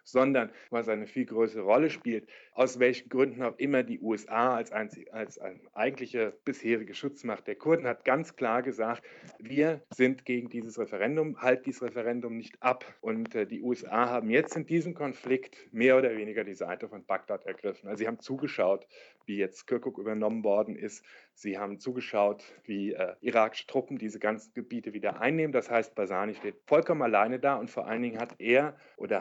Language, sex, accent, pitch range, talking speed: German, male, German, 110-140 Hz, 185 wpm